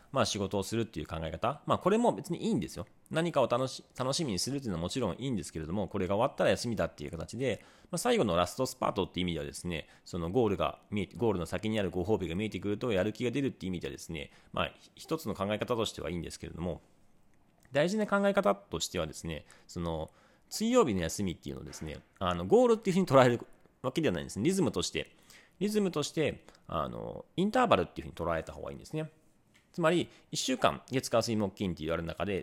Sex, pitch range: male, 90-140 Hz